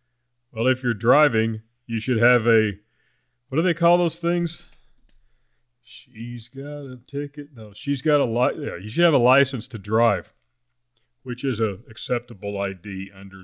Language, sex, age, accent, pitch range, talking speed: English, male, 40-59, American, 105-130 Hz, 165 wpm